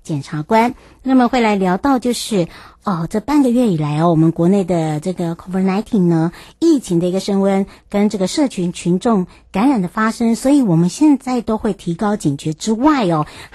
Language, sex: Chinese, male